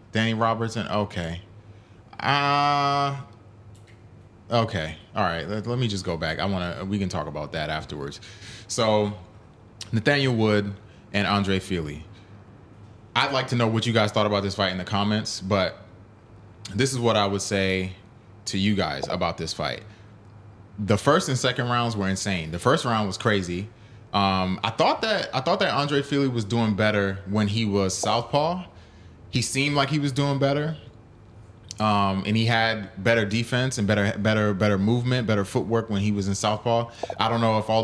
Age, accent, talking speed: 20-39, American, 180 wpm